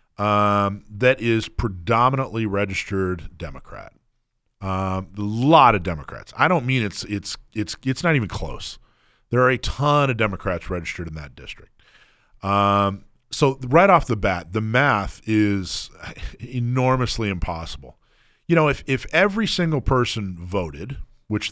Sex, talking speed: male, 140 wpm